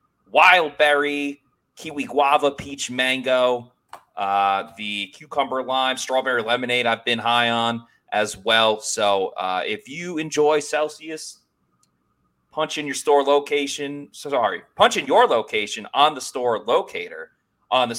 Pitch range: 110-145 Hz